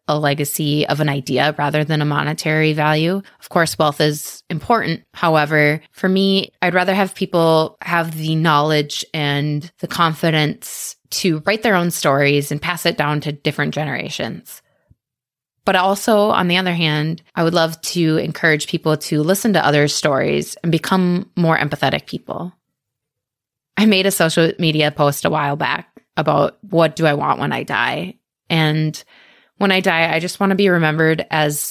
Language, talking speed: English, 170 wpm